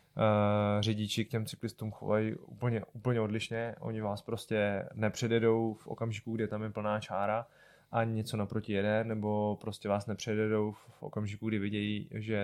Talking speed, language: 155 wpm, Czech